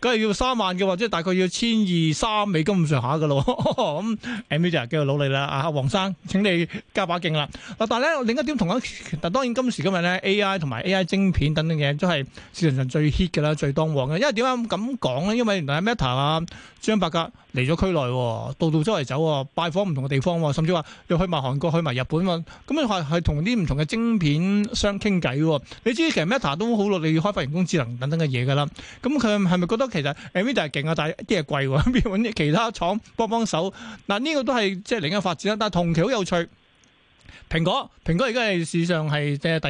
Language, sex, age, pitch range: Chinese, male, 20-39, 155-215 Hz